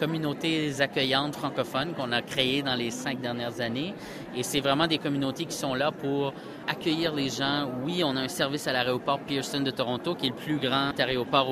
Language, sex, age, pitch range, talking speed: French, male, 30-49, 130-155 Hz, 205 wpm